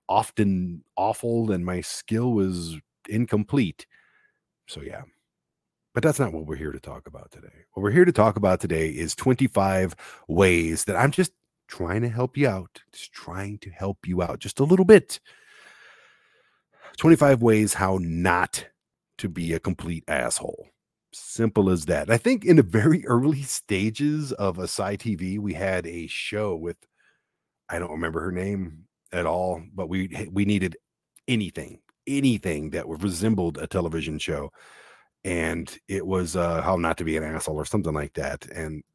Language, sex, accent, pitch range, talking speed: English, male, American, 85-110 Hz, 165 wpm